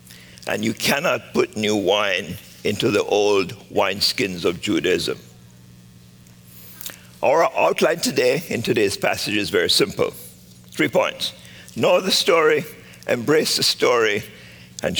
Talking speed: 120 wpm